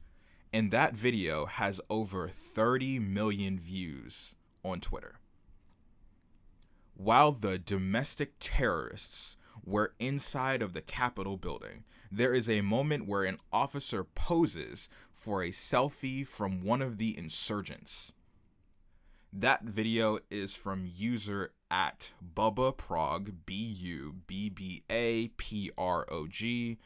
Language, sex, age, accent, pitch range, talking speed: English, male, 20-39, American, 90-115 Hz, 100 wpm